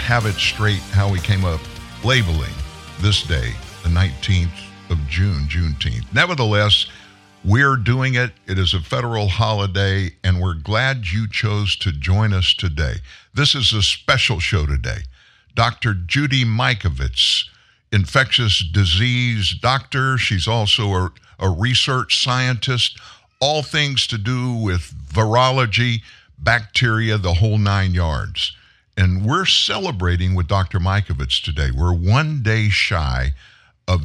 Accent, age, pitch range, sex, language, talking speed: American, 60-79, 90-120 Hz, male, English, 130 wpm